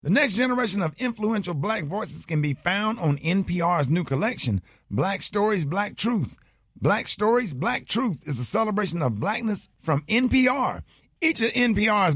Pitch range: 140-205 Hz